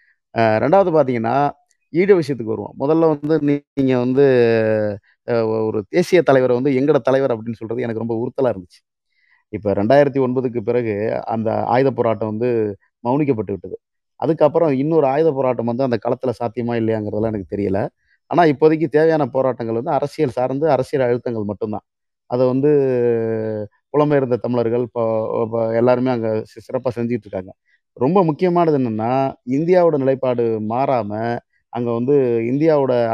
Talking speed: 120 wpm